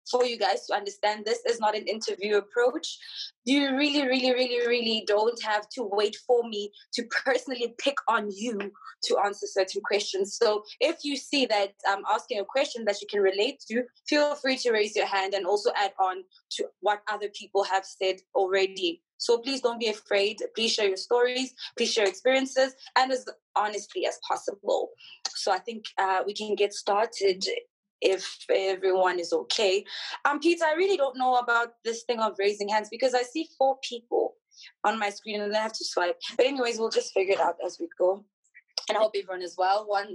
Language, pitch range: English, 195-255 Hz